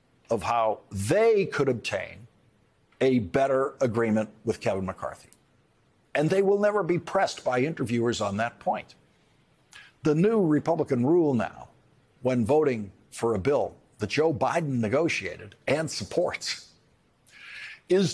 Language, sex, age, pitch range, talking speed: English, male, 60-79, 125-170 Hz, 130 wpm